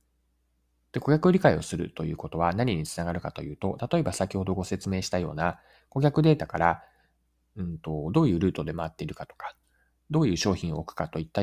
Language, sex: Japanese, male